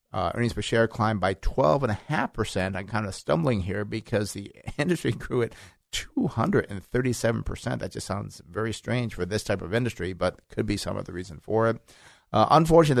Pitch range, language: 100-120 Hz, English